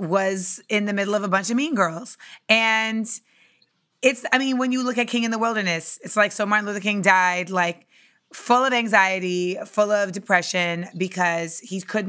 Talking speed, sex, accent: 195 wpm, female, American